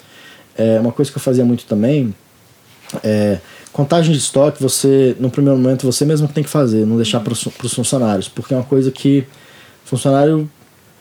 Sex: male